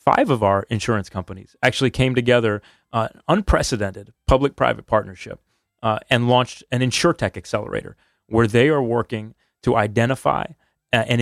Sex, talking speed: male, 145 wpm